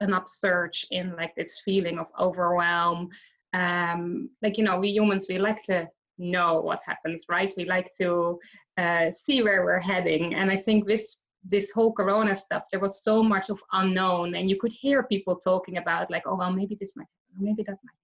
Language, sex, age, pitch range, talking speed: English, female, 20-39, 170-205 Hz, 200 wpm